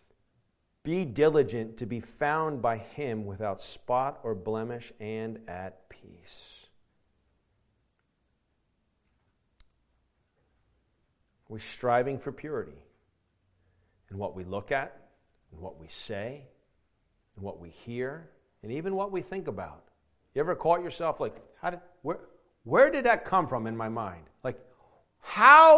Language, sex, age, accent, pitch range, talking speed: English, male, 40-59, American, 110-165 Hz, 130 wpm